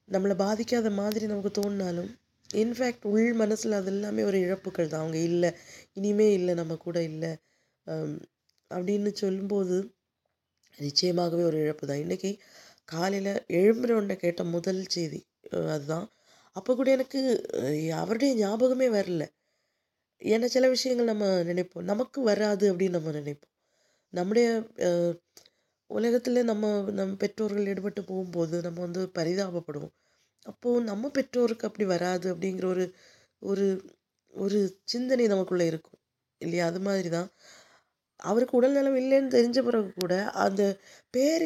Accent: native